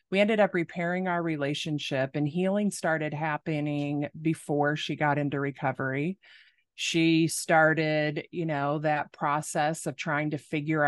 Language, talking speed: English, 140 wpm